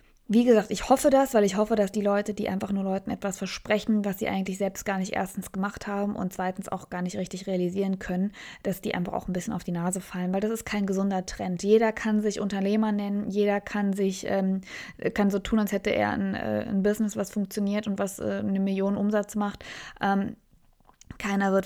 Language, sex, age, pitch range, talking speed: German, female, 20-39, 195-220 Hz, 220 wpm